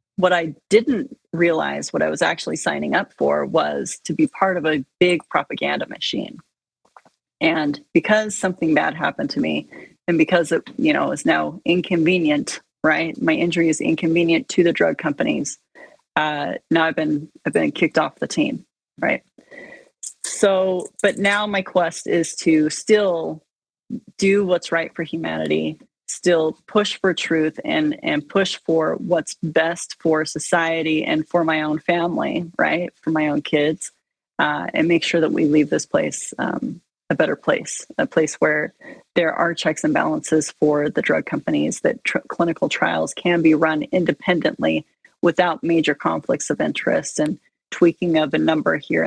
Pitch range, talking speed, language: 155-190 Hz, 165 wpm, English